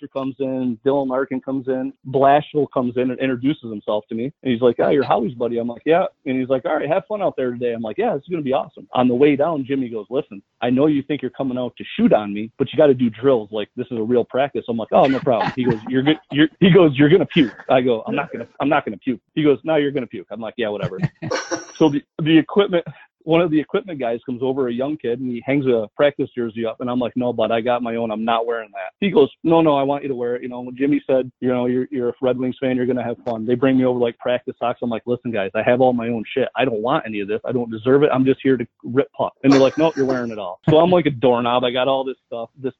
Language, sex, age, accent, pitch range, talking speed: English, male, 30-49, American, 120-145 Hz, 315 wpm